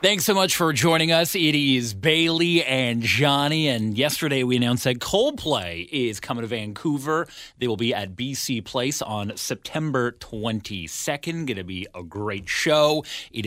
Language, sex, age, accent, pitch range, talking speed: English, male, 30-49, American, 115-165 Hz, 165 wpm